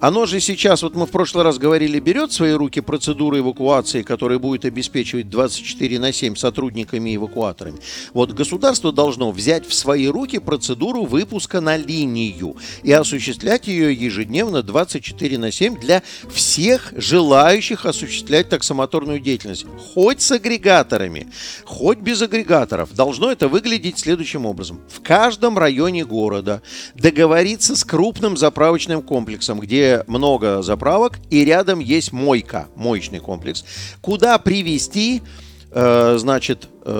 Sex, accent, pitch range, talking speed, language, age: male, native, 120-165 Hz, 130 wpm, Russian, 50-69